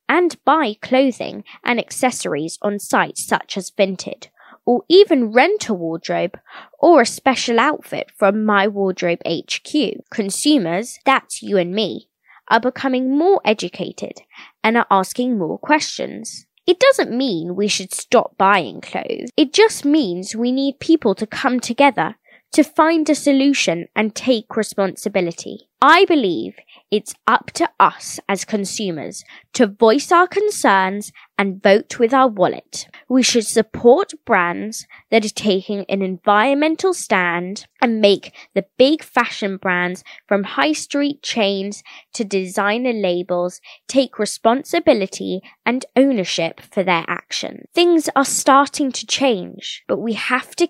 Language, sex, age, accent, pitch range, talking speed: English, female, 20-39, British, 195-275 Hz, 140 wpm